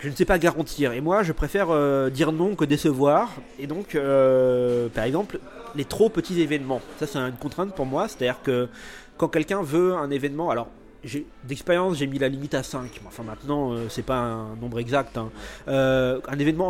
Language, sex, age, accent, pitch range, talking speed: French, male, 30-49, French, 135-165 Hz, 210 wpm